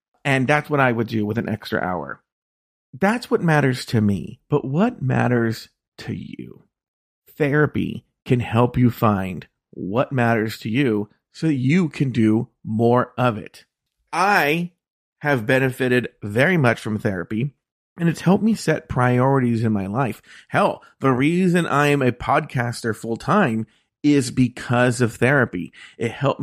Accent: American